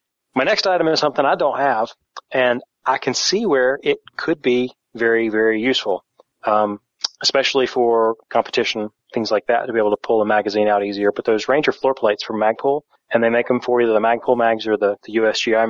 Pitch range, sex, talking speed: 115-135 Hz, male, 210 wpm